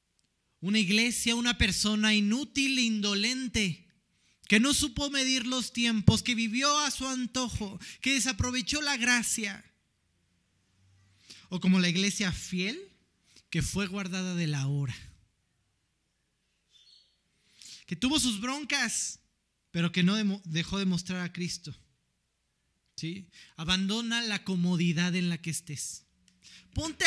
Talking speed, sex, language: 120 wpm, male, Spanish